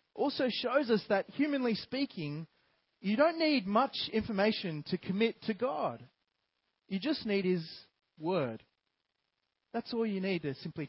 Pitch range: 145-210 Hz